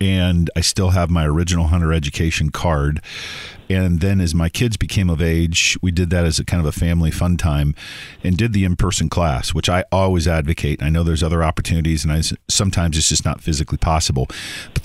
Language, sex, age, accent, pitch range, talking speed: English, male, 50-69, American, 80-95 Hz, 200 wpm